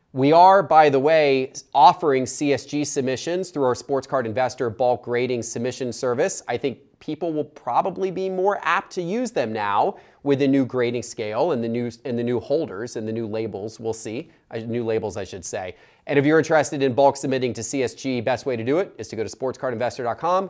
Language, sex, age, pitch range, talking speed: English, male, 30-49, 120-155 Hz, 210 wpm